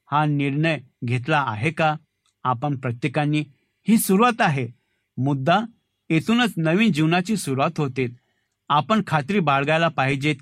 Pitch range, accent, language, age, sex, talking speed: 130-180 Hz, native, Marathi, 60-79, male, 125 wpm